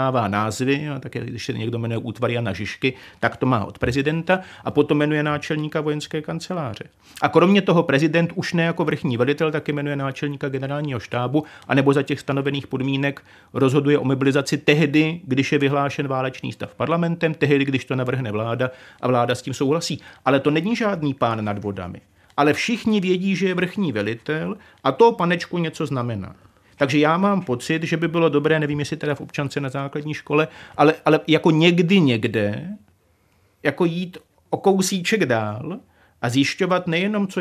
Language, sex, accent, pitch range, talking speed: Czech, male, native, 125-160 Hz, 175 wpm